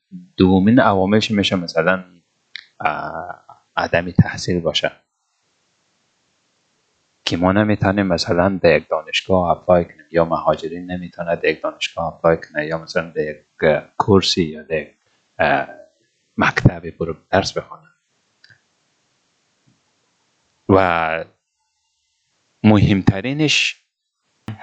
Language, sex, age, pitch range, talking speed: Persian, male, 30-49, 85-110 Hz, 85 wpm